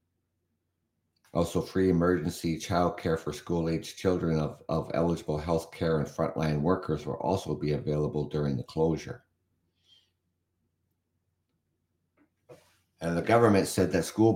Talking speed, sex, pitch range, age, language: 120 wpm, male, 80-90 Hz, 60-79, English